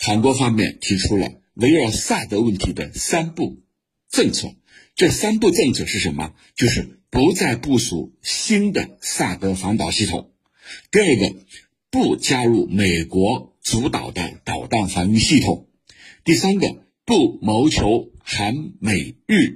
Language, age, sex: Chinese, 60-79, male